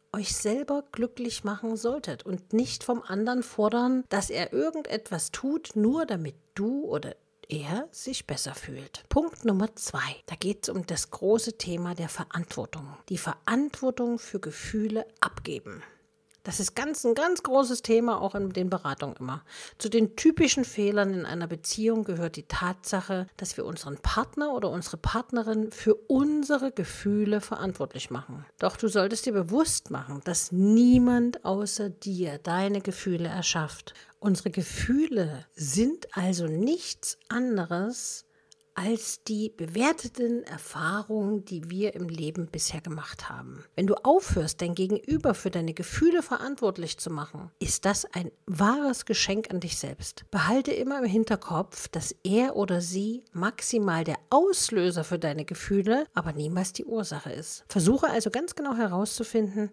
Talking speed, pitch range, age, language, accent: 145 wpm, 175-235 Hz, 50-69, German, German